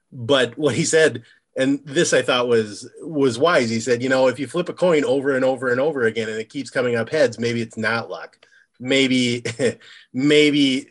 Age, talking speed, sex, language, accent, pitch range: 30-49, 210 wpm, male, English, American, 110-140 Hz